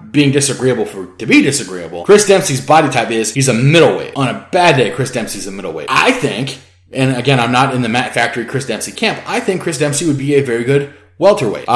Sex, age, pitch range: male, 30-49, 110-145 Hz